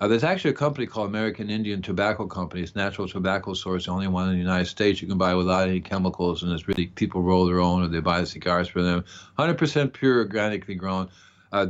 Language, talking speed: English, 240 wpm